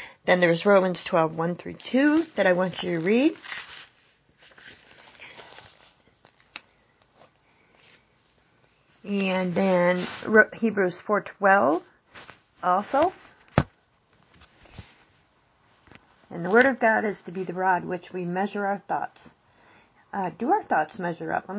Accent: American